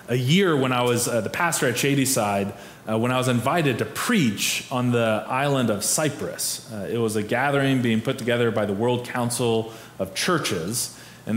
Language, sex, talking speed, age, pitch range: English, male, 195 wpm, 30-49, 110-145 Hz